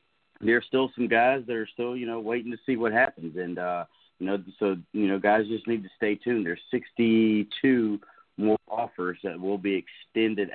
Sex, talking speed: male, 200 wpm